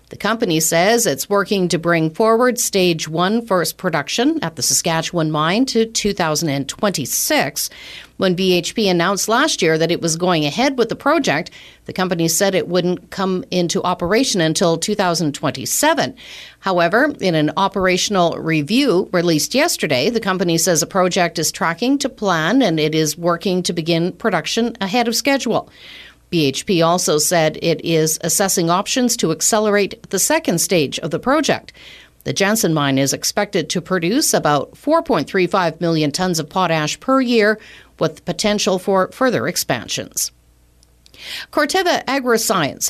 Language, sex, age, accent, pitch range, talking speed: English, female, 50-69, American, 165-220 Hz, 145 wpm